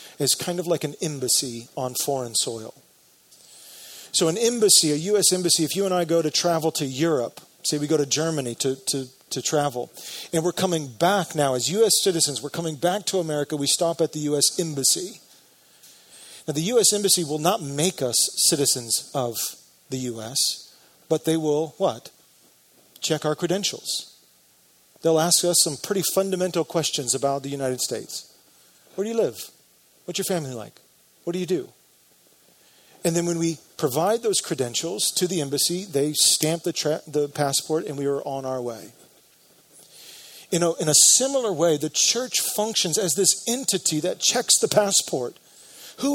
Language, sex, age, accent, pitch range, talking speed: English, male, 40-59, American, 135-180 Hz, 170 wpm